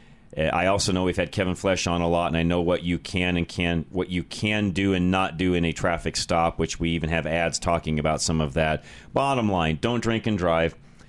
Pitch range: 85-115 Hz